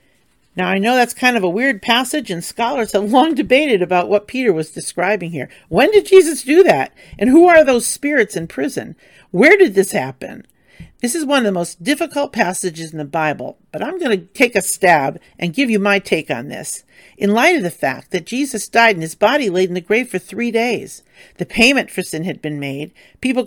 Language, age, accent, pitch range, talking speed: English, 50-69, American, 165-245 Hz, 220 wpm